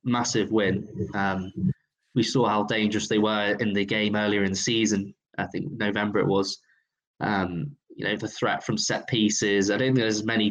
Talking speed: 200 wpm